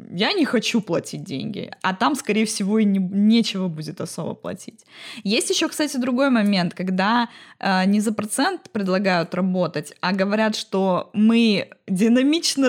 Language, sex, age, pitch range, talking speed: Russian, female, 20-39, 195-260 Hz, 150 wpm